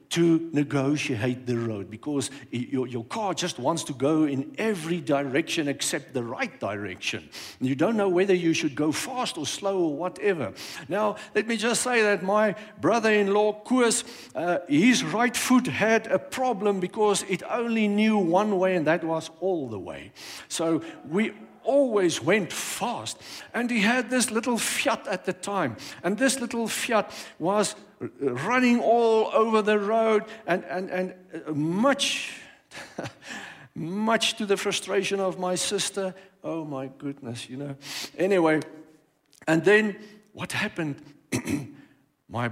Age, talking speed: 60-79, 145 wpm